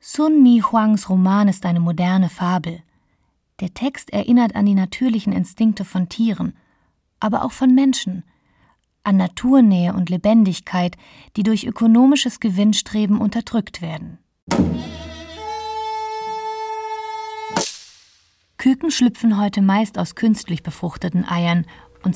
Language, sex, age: German, female, 30-49